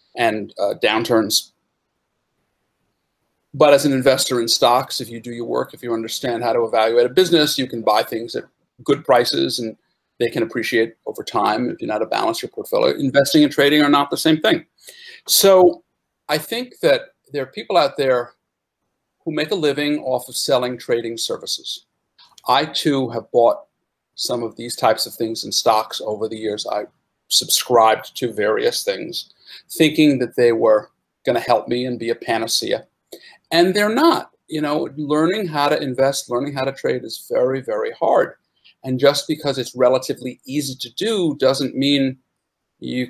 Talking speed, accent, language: 180 wpm, American, English